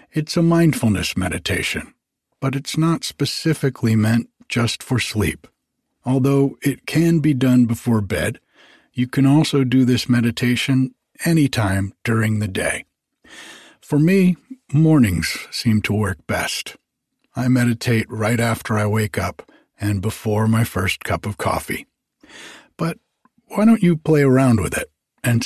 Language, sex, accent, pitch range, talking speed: English, male, American, 110-140 Hz, 140 wpm